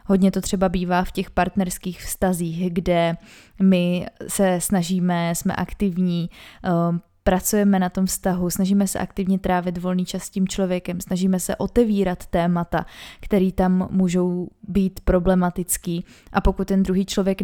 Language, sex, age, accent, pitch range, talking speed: Czech, female, 20-39, native, 185-200 Hz, 140 wpm